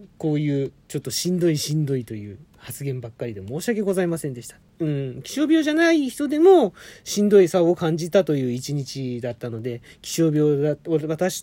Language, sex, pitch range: Japanese, male, 140-215 Hz